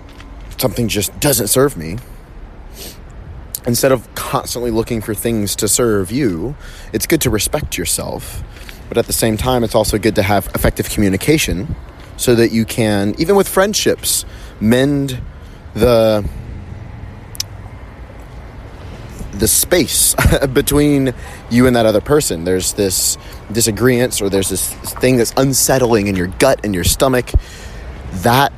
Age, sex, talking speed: 30-49, male, 135 wpm